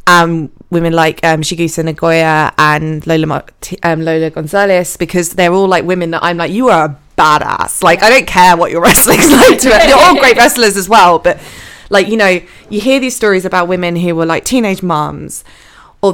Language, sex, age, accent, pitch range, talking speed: English, female, 20-39, British, 170-200 Hz, 205 wpm